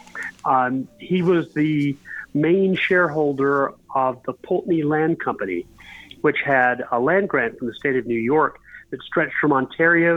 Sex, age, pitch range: male, 40-59, 130-170 Hz